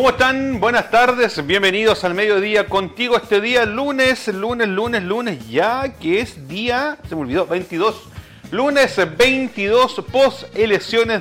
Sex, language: male, Spanish